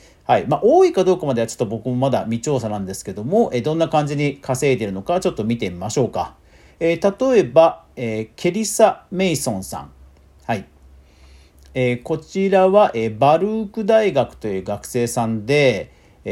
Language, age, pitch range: Japanese, 40-59, 110-185 Hz